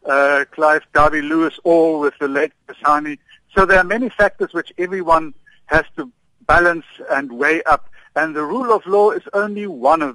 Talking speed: 185 wpm